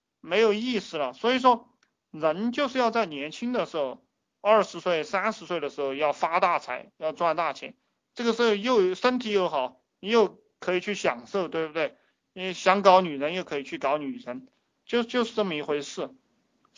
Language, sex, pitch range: Chinese, male, 150-220 Hz